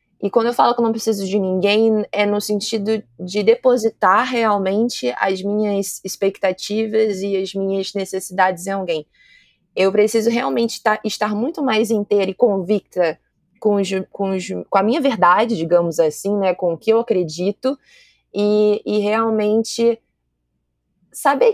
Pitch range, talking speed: 185-225 Hz, 150 wpm